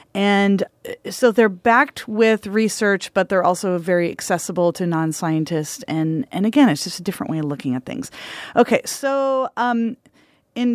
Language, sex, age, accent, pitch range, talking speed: English, female, 30-49, American, 180-235 Hz, 165 wpm